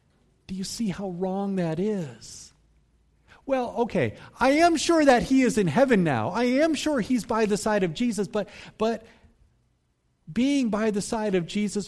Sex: male